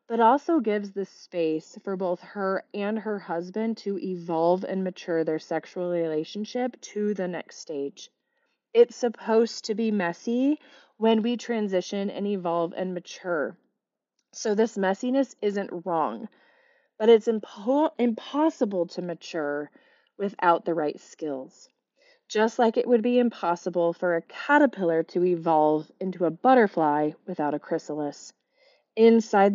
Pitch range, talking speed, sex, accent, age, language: 170-225 Hz, 135 wpm, female, American, 30-49, English